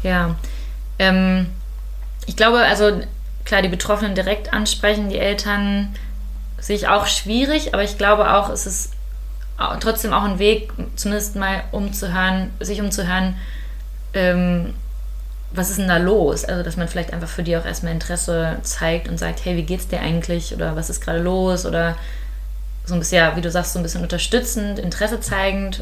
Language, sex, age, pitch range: German, female, 20-39, 155-195 Hz